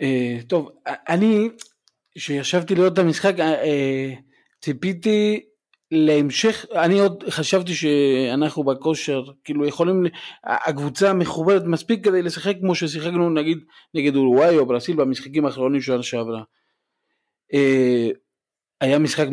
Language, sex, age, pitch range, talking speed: Hebrew, male, 40-59, 125-155 Hz, 100 wpm